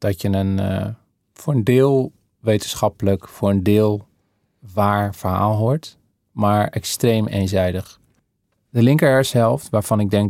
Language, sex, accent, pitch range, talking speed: Dutch, male, Dutch, 100-125 Hz, 130 wpm